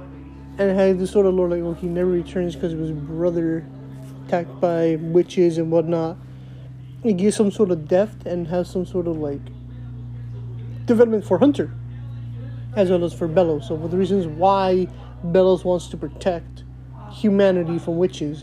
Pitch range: 125-195 Hz